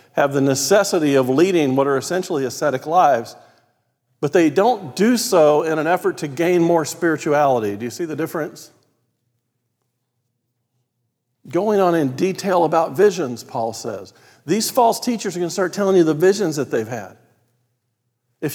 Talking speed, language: 160 wpm, English